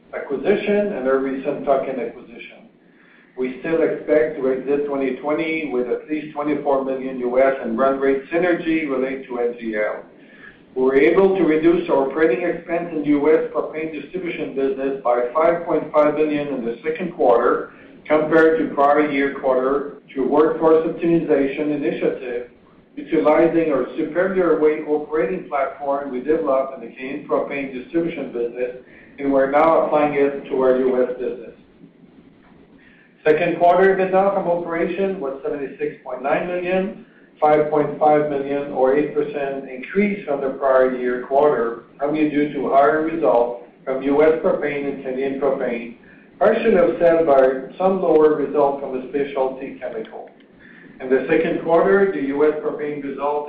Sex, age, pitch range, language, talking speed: male, 60-79, 135-160 Hz, English, 140 wpm